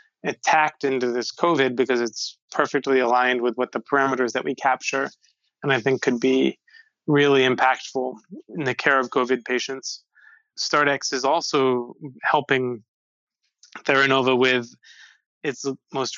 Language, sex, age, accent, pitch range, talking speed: English, male, 20-39, American, 130-145 Hz, 135 wpm